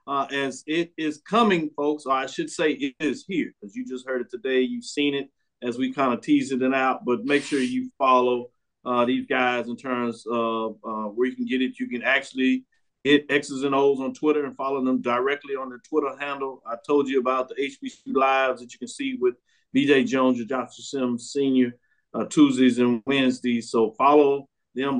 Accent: American